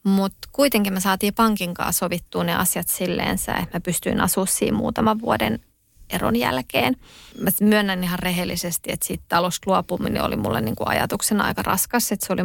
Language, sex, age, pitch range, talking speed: Finnish, female, 20-39, 180-205 Hz, 175 wpm